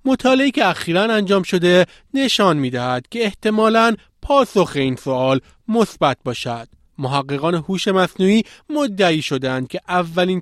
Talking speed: 120 wpm